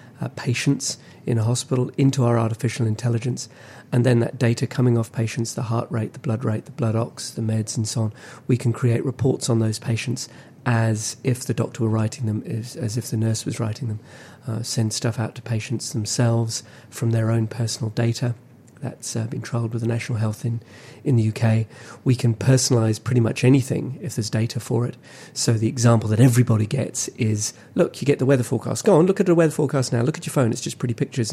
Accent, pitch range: British, 115-130 Hz